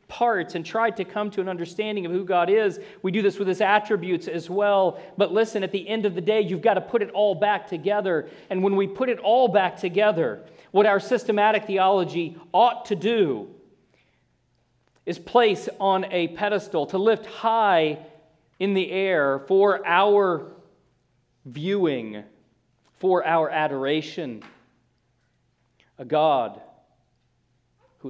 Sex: male